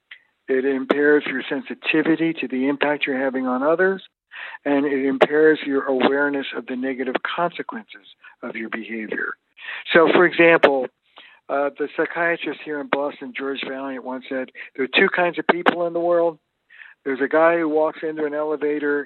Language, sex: English, male